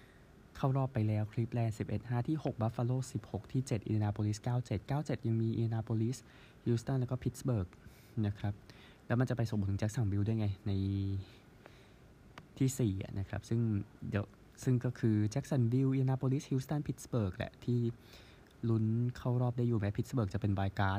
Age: 20-39